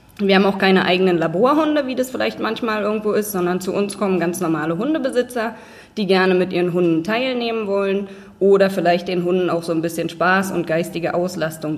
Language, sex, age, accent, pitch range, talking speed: German, female, 20-39, German, 175-225 Hz, 195 wpm